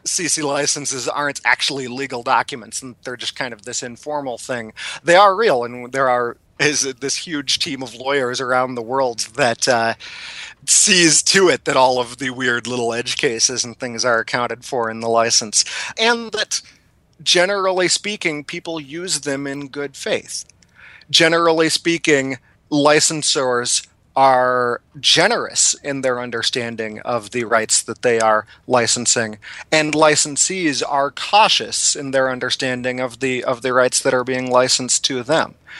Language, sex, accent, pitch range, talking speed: English, male, American, 125-145 Hz, 155 wpm